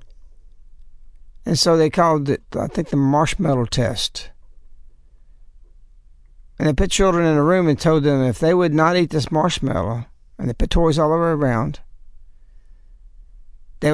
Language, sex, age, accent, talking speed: English, male, 60-79, American, 155 wpm